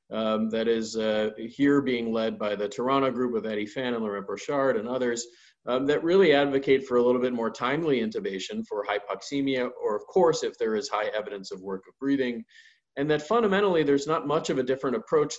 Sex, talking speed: male, 210 wpm